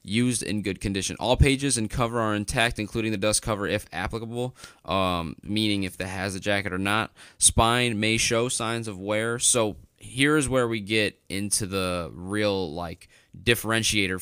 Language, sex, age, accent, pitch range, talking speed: English, male, 20-39, American, 95-115 Hz, 175 wpm